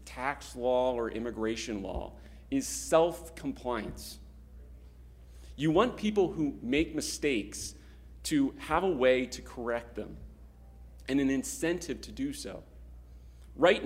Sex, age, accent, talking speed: male, 40-59, American, 115 wpm